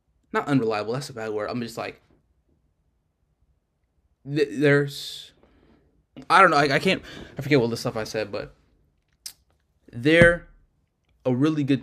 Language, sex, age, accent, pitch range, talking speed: English, male, 20-39, American, 100-130 Hz, 145 wpm